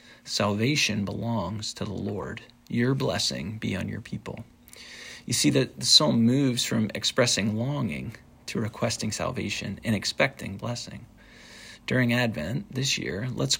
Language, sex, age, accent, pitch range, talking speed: English, male, 40-59, American, 105-120 Hz, 135 wpm